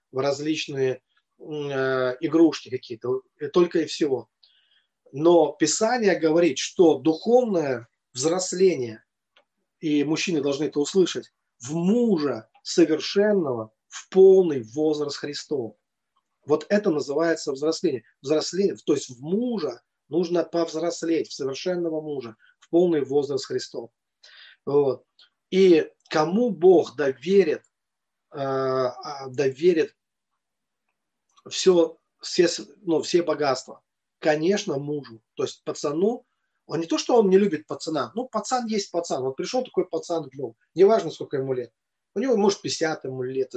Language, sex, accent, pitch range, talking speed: Russian, male, native, 145-205 Hz, 120 wpm